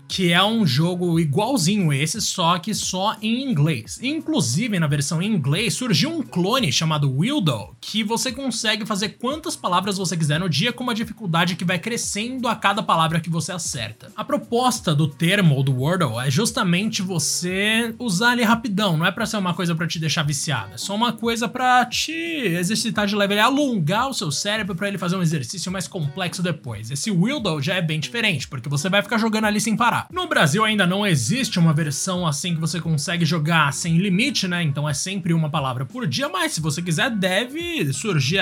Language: Portuguese